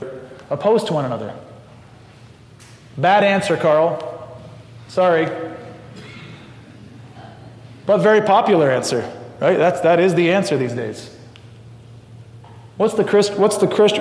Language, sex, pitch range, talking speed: English, male, 120-170 Hz, 105 wpm